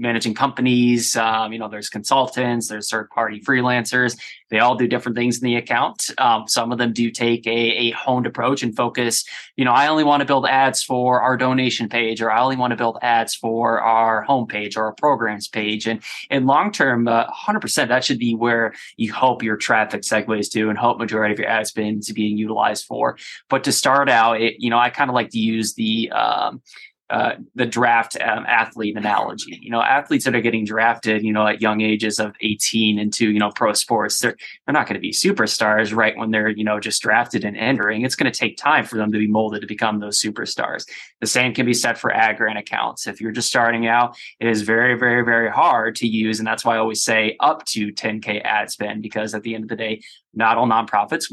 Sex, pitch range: male, 110-120 Hz